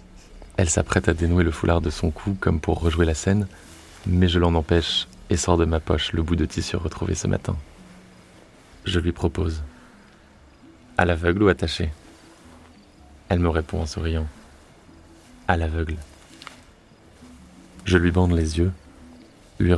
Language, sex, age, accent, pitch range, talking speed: French, male, 30-49, French, 80-90 Hz, 150 wpm